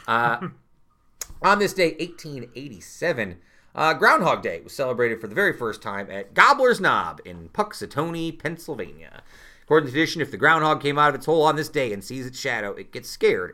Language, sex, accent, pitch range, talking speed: English, male, American, 110-150 Hz, 185 wpm